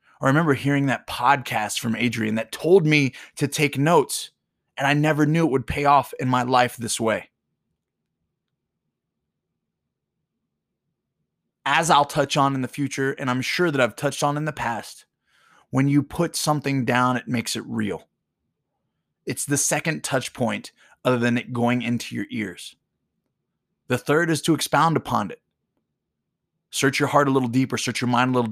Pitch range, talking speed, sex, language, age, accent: 120-145 Hz, 175 wpm, male, English, 20-39, American